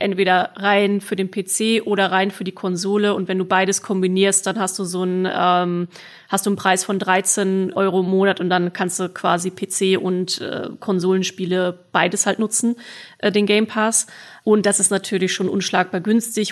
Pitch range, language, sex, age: 190-210 Hz, German, female, 30-49